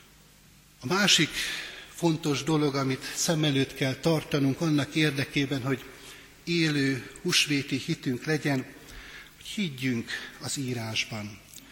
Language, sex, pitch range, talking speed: Hungarian, male, 130-160 Hz, 95 wpm